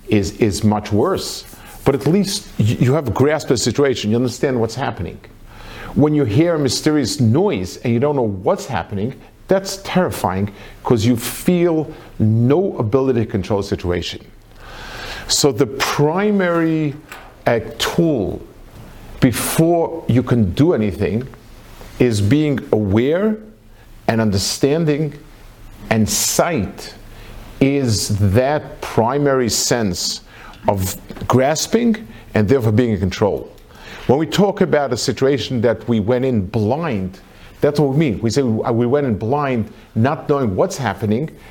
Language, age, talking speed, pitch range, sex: English, 50-69, 135 wpm, 110-140 Hz, male